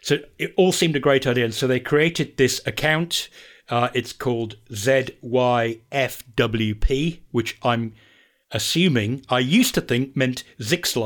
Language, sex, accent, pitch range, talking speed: English, male, British, 110-130 Hz, 140 wpm